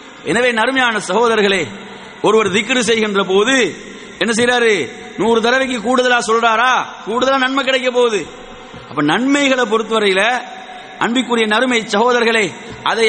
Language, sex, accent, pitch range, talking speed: English, male, Indian, 200-245 Hz, 140 wpm